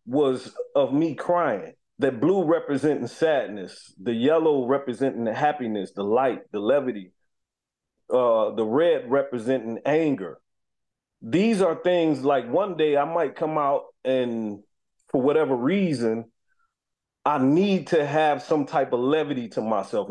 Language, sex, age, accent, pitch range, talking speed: English, male, 30-49, American, 125-170 Hz, 135 wpm